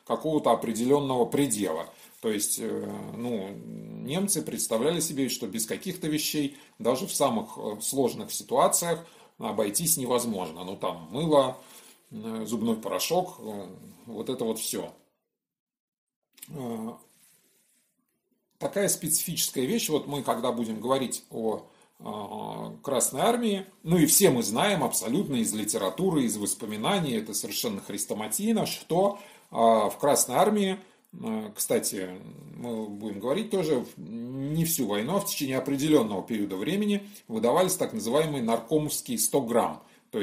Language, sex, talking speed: Russian, male, 115 wpm